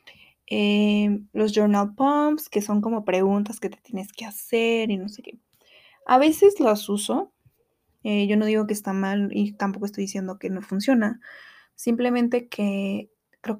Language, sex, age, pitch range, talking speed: Spanish, female, 20-39, 205-240 Hz, 170 wpm